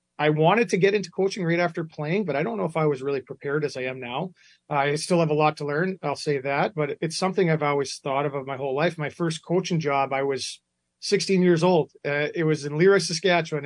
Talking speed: 255 wpm